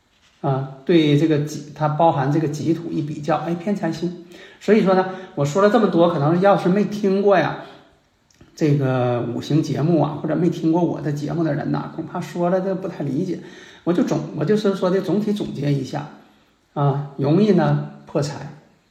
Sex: male